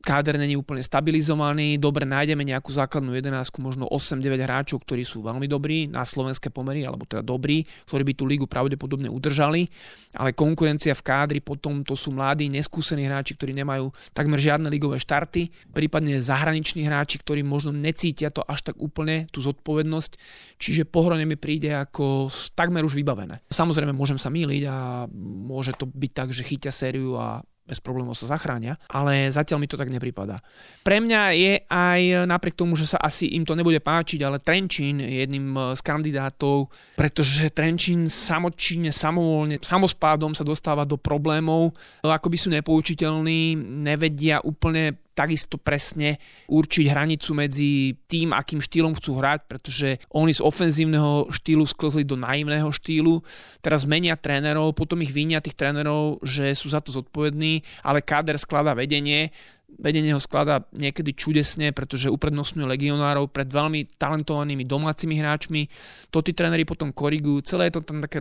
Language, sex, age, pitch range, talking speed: Slovak, male, 30-49, 140-155 Hz, 160 wpm